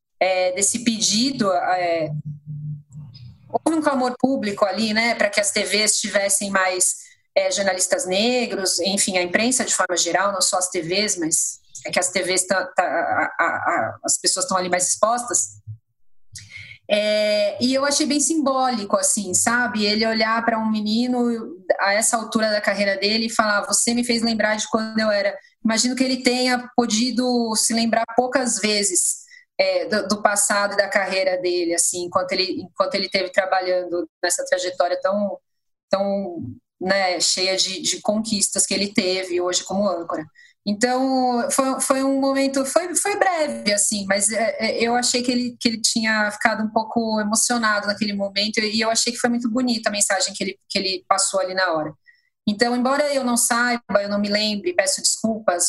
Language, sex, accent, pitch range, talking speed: Portuguese, female, Brazilian, 190-245 Hz, 175 wpm